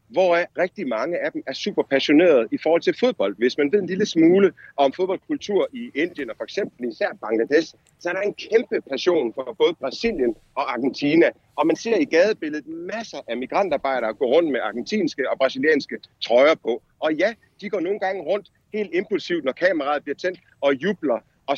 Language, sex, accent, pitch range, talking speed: Danish, male, native, 140-220 Hz, 195 wpm